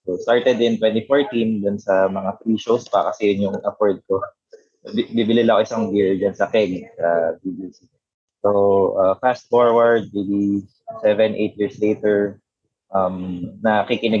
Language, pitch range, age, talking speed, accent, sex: English, 100-120 Hz, 20-39, 155 wpm, Filipino, male